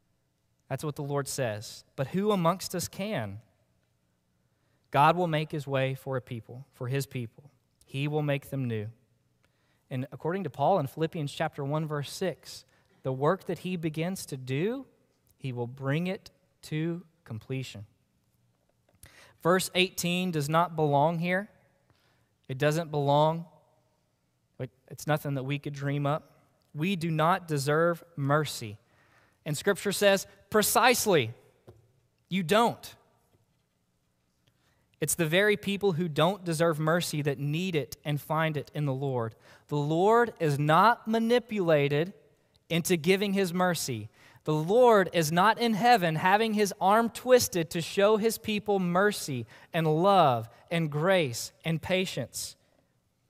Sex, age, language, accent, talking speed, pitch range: male, 20-39, English, American, 140 wpm, 130-180 Hz